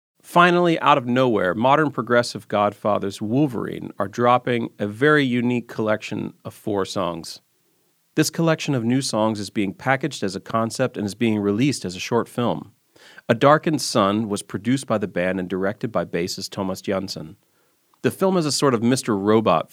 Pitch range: 105-135 Hz